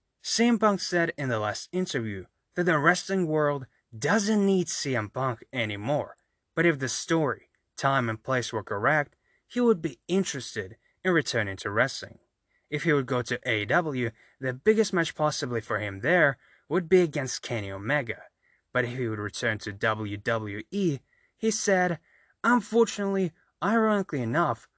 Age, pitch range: 20-39, 120-185 Hz